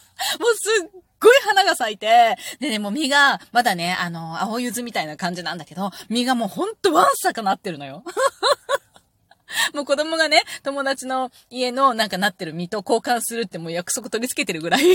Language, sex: Japanese, female